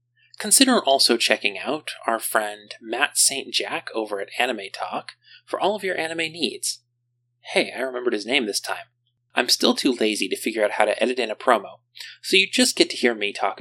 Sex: male